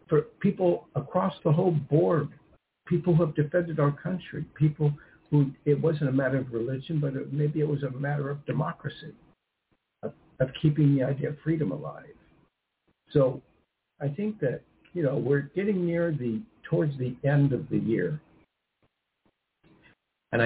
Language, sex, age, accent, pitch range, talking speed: English, male, 60-79, American, 135-160 Hz, 155 wpm